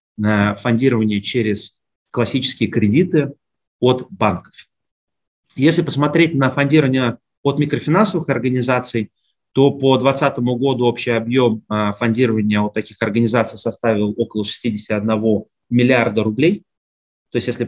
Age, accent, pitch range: 30-49, native, 110-135 Hz